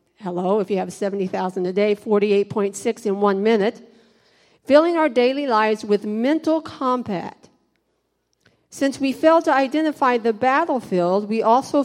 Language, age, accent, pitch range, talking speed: English, 50-69, American, 195-250 Hz, 135 wpm